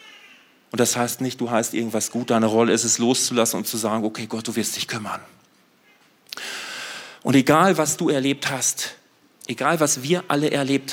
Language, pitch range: German, 120-180 Hz